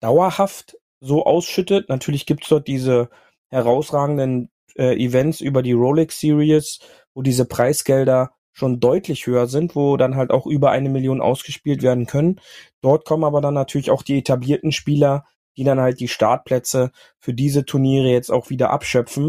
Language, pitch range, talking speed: German, 125-145 Hz, 165 wpm